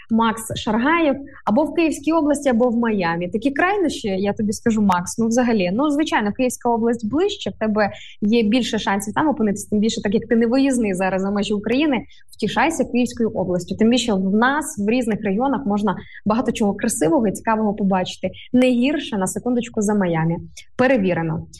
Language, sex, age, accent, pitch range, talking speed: Ukrainian, female, 20-39, native, 205-260 Hz, 180 wpm